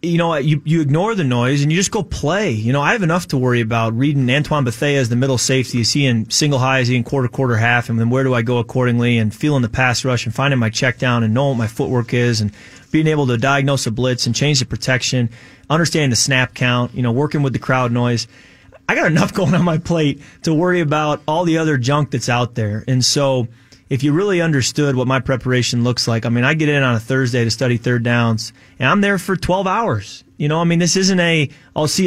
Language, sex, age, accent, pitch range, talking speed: English, male, 30-49, American, 120-150 Hz, 260 wpm